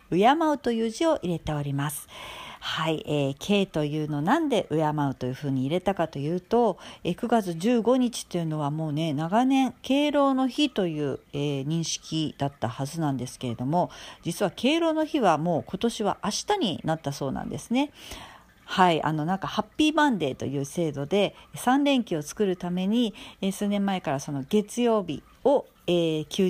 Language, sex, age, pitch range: Japanese, female, 50-69, 145-205 Hz